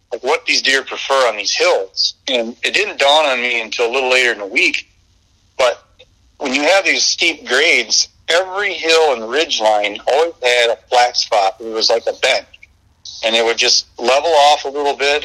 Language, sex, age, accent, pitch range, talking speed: English, male, 40-59, American, 110-130 Hz, 205 wpm